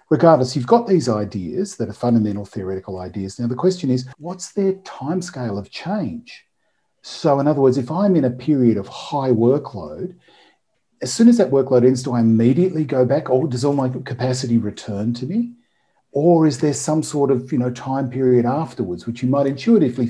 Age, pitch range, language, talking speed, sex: 50-69, 110-140 Hz, English, 195 wpm, male